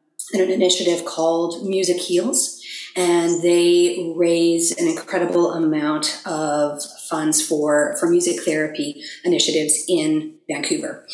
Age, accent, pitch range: 30-49, American, 160-200 Hz